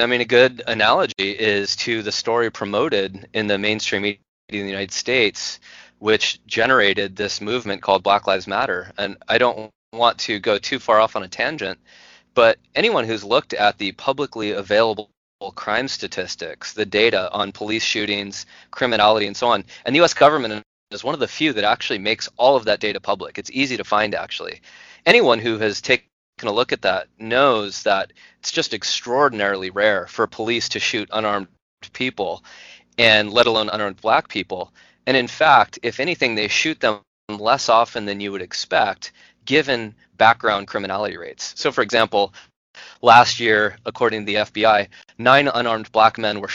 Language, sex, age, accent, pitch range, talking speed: English, male, 20-39, American, 100-120 Hz, 180 wpm